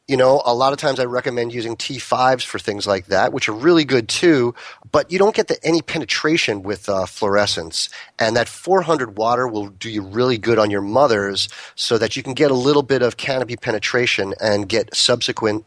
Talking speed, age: 205 wpm, 30-49